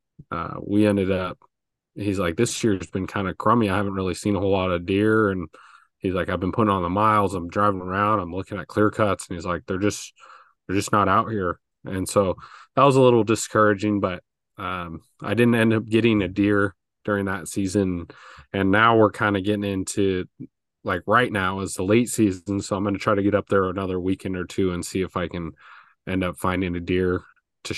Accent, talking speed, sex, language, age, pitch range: American, 230 wpm, male, English, 20-39, 95-105 Hz